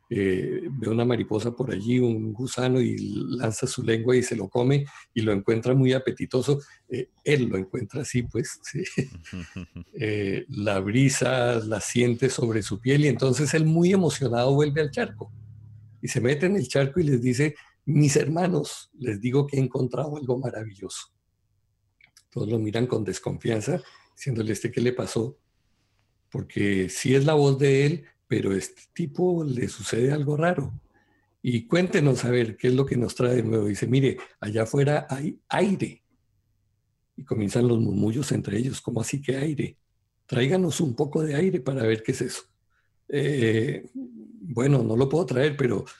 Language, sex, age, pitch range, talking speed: English, male, 50-69, 110-140 Hz, 170 wpm